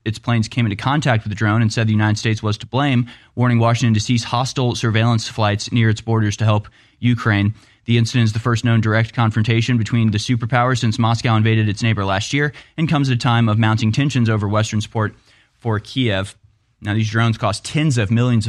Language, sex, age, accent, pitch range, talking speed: English, male, 20-39, American, 105-125 Hz, 215 wpm